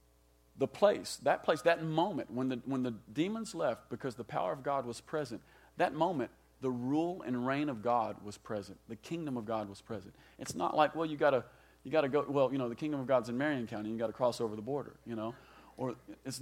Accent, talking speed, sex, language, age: American, 240 wpm, male, English, 40-59